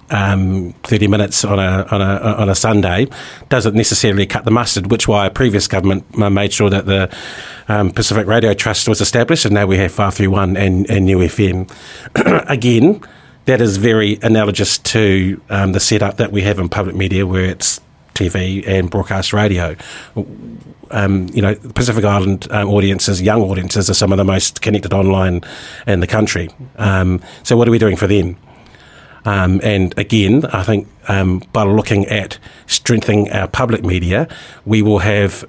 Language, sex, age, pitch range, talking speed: English, male, 40-59, 95-110 Hz, 180 wpm